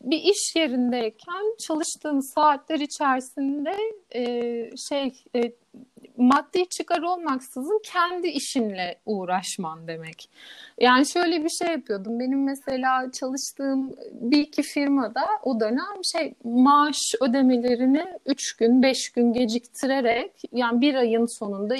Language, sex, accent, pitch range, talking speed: Turkish, female, native, 230-295 Hz, 115 wpm